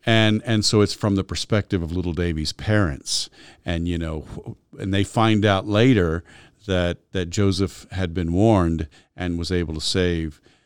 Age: 50-69